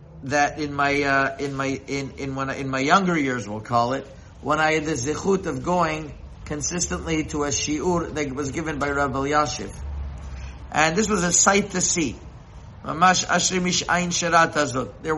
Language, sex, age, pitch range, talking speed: English, male, 50-69, 135-180 Hz, 160 wpm